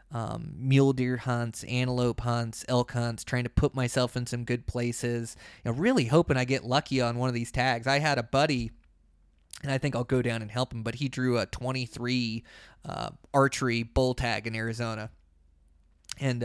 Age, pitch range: 20-39, 115-135 Hz